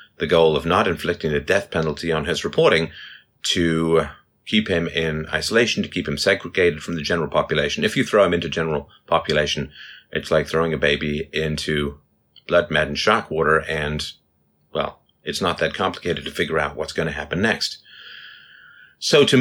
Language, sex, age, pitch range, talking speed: English, male, 30-49, 75-90 Hz, 175 wpm